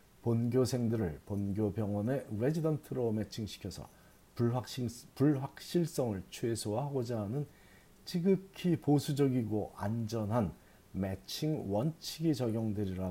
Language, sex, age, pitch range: Korean, male, 40-59, 100-145 Hz